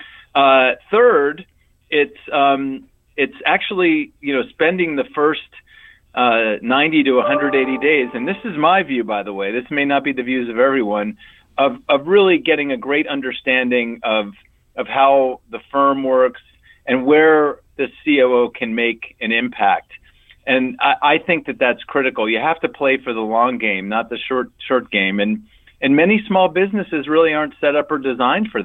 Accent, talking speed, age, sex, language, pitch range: American, 180 wpm, 40-59, male, English, 115-150 Hz